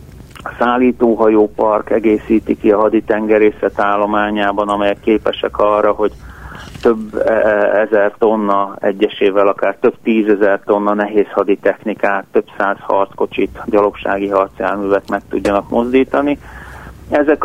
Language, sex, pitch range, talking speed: Hungarian, male, 105-125 Hz, 105 wpm